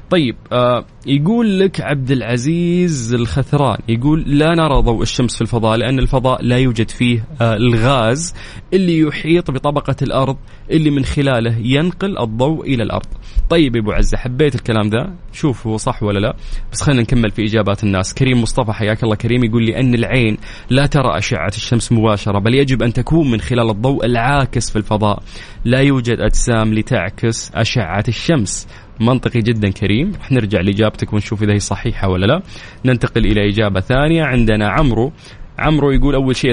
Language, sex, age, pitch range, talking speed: Arabic, male, 20-39, 110-135 Hz, 165 wpm